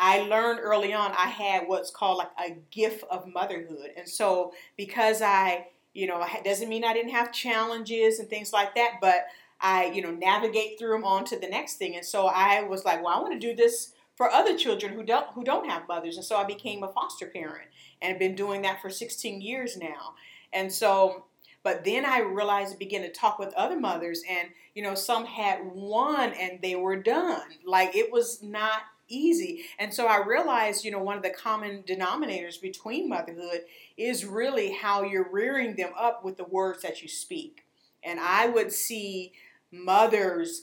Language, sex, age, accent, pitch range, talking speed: English, female, 40-59, American, 190-235 Hz, 200 wpm